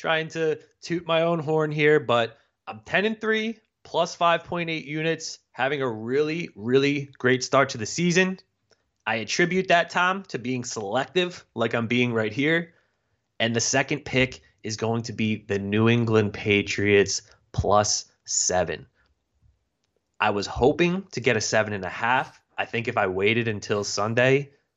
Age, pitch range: 20-39, 100-130 Hz